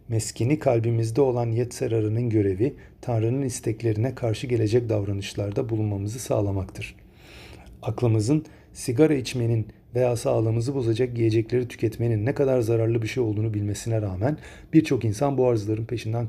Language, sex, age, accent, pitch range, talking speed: Turkish, male, 40-59, native, 105-125 Hz, 120 wpm